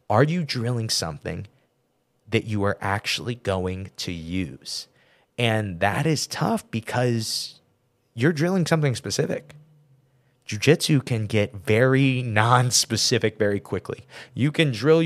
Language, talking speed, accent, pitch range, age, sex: English, 130 wpm, American, 105-140 Hz, 30-49, male